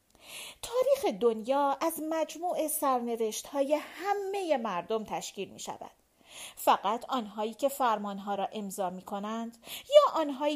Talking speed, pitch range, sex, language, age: 110 wpm, 210-300 Hz, female, Persian, 40-59